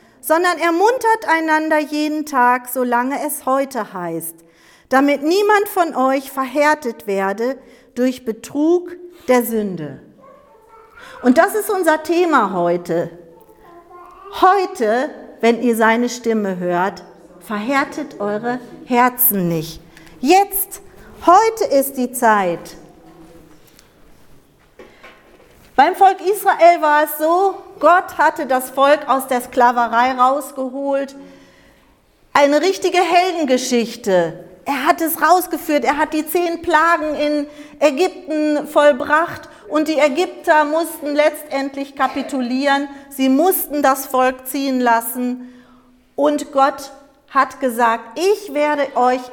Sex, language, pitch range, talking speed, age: female, German, 240-320 Hz, 105 wpm, 50-69